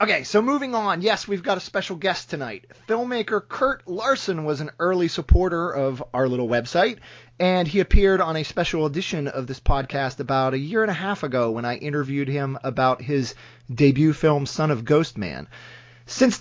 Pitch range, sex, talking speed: 130-175 Hz, male, 190 wpm